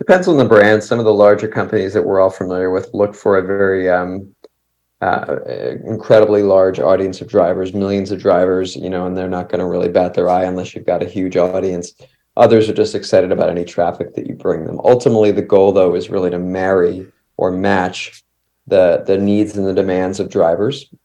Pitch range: 90-100 Hz